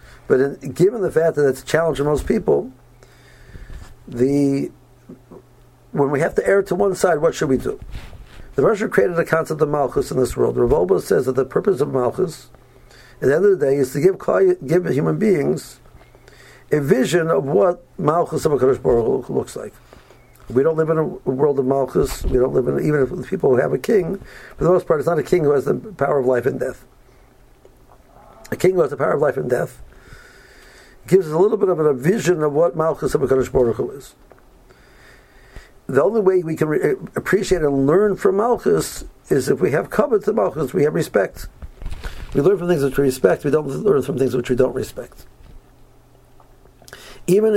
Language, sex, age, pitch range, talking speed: English, male, 60-79, 135-185 Hz, 205 wpm